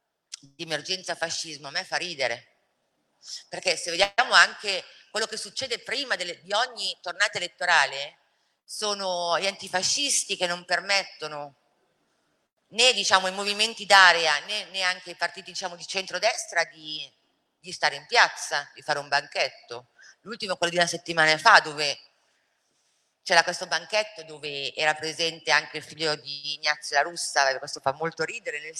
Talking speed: 155 wpm